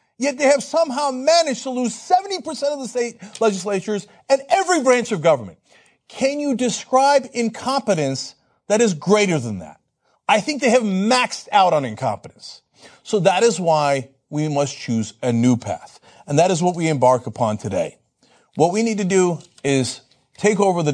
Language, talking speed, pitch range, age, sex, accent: English, 175 wpm, 145-225 Hz, 40-59, male, American